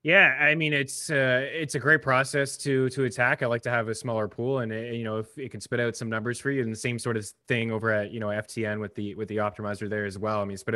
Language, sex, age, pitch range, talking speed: English, male, 20-39, 110-145 Hz, 300 wpm